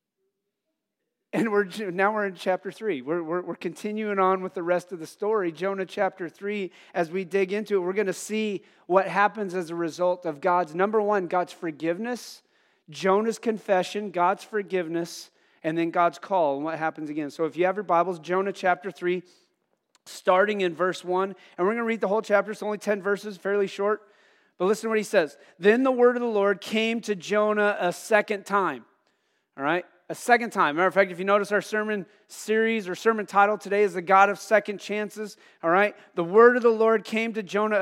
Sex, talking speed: male, 210 wpm